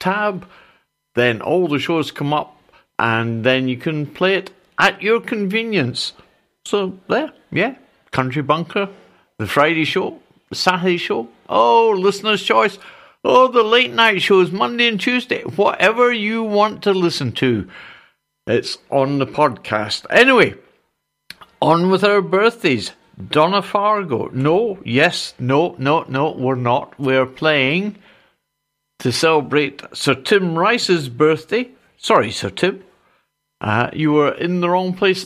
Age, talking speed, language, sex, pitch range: 60-79, 135 wpm, English, male, 140-195 Hz